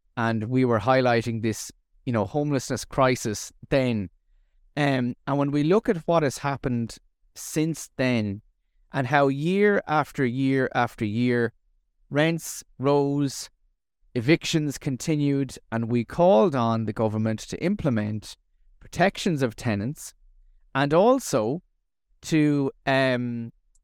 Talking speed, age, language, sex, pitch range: 120 wpm, 30-49, English, male, 115-155 Hz